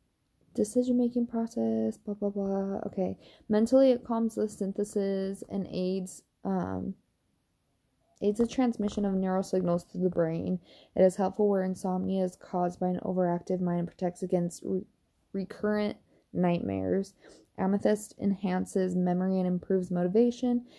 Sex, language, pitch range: female, English, 180-220 Hz